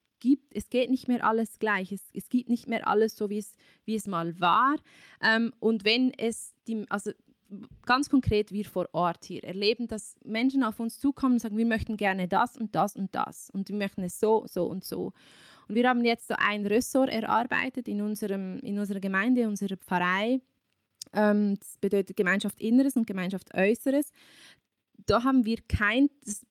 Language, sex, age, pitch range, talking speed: German, female, 20-39, 205-255 Hz, 190 wpm